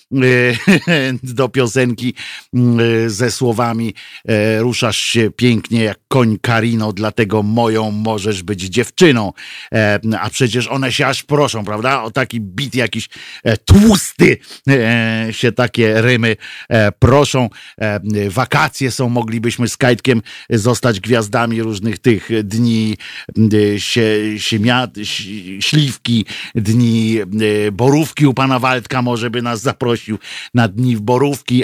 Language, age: Polish, 50-69